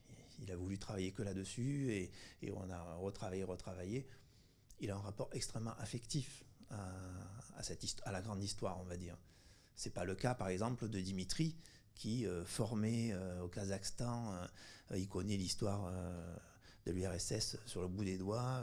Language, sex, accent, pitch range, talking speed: French, male, French, 95-120 Hz, 180 wpm